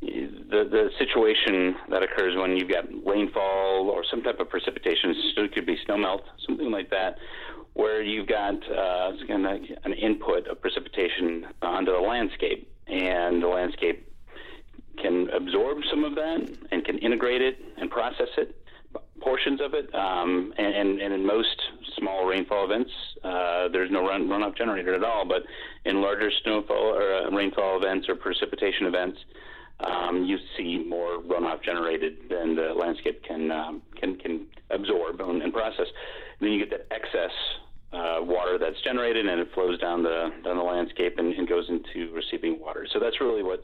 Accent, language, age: American, English, 40-59